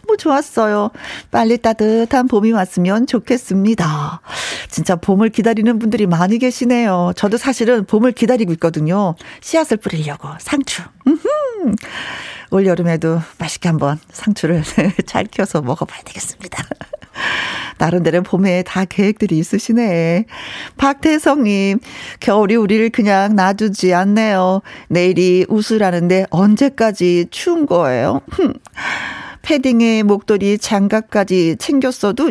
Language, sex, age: Korean, female, 40-59